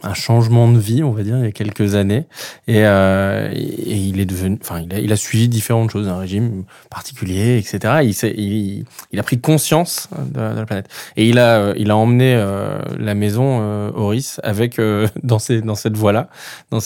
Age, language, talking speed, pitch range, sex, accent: 20-39, French, 215 wpm, 100-125 Hz, male, French